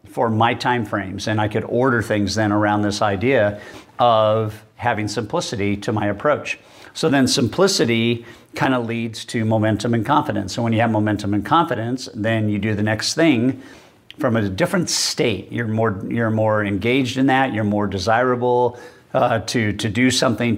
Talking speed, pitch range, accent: 180 wpm, 110-125 Hz, American